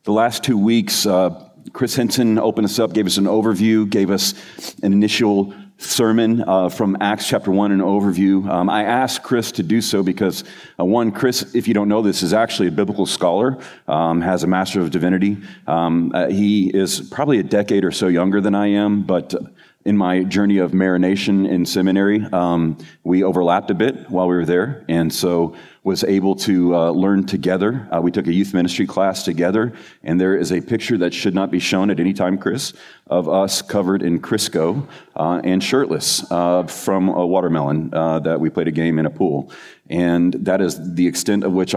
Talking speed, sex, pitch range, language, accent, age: 205 wpm, male, 85-100 Hz, English, American, 40-59